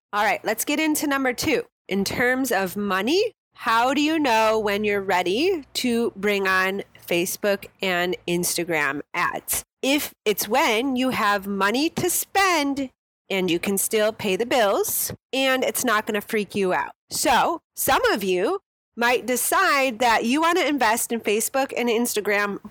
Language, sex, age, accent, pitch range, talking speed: English, female, 30-49, American, 210-280 Hz, 165 wpm